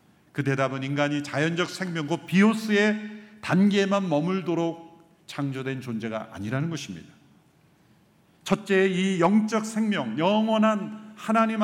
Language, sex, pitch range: Korean, male, 135-215 Hz